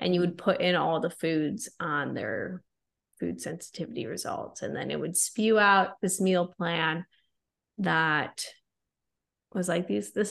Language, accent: English, American